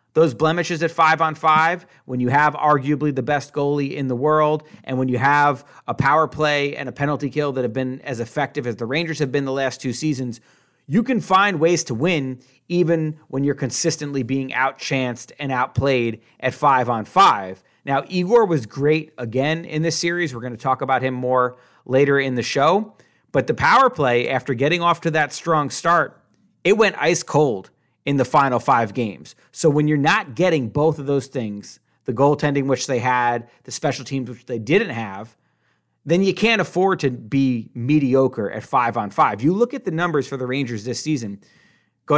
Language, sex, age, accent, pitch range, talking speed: English, male, 30-49, American, 125-155 Hz, 200 wpm